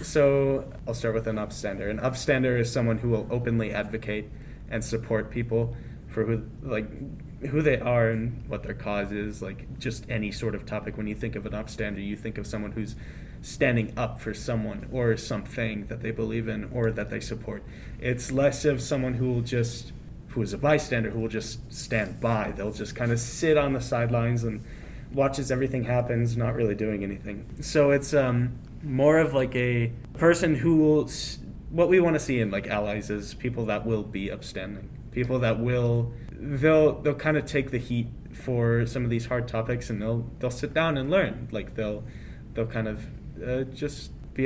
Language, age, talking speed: English, 20-39, 200 wpm